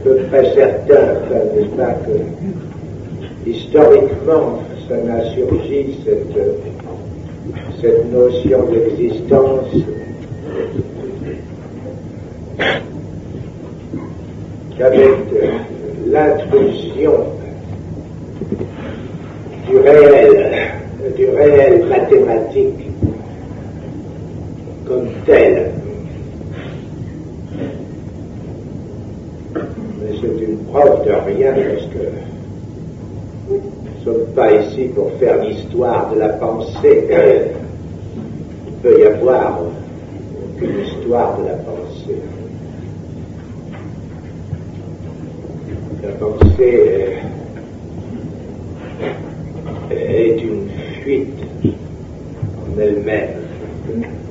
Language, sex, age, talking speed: German, male, 60-79, 65 wpm